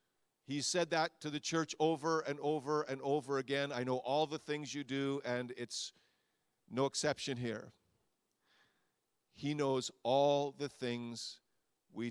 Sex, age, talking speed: male, 50-69, 150 wpm